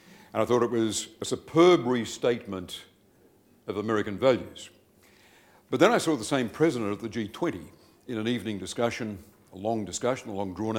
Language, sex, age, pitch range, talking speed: English, male, 60-79, 100-120 Hz, 170 wpm